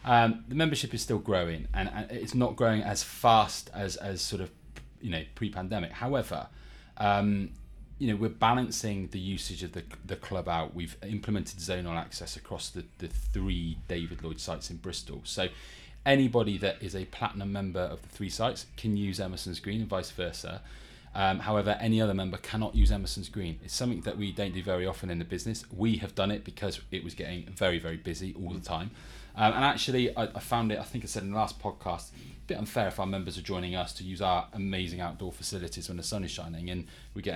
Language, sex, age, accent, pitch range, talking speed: English, male, 30-49, British, 90-110 Hz, 220 wpm